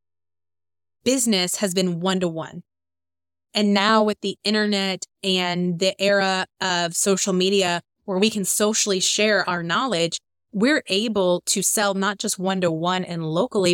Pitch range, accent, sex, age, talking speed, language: 160-200 Hz, American, female, 20-39, 135 wpm, English